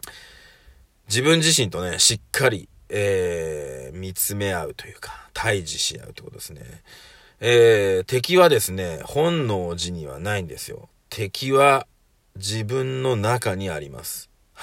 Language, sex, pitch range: Japanese, male, 95-130 Hz